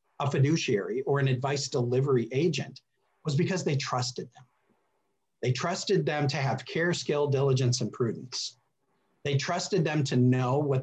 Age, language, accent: 40-59, English, American